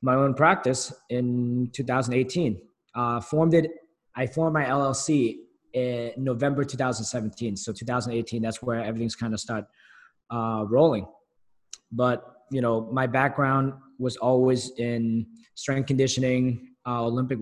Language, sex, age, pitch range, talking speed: English, male, 20-39, 115-135 Hz, 125 wpm